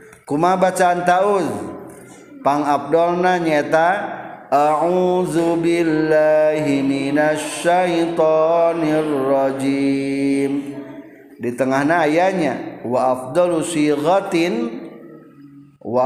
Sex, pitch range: male, 135-170 Hz